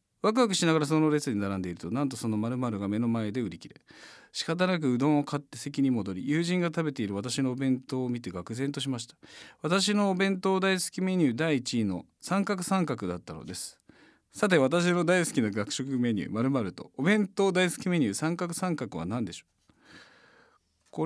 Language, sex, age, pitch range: Japanese, male, 40-59, 115-180 Hz